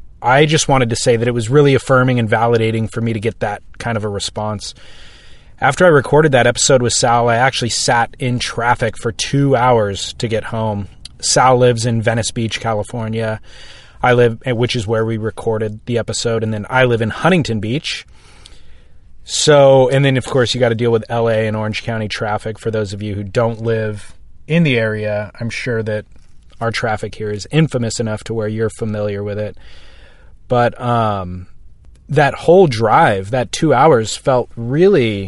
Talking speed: 185 wpm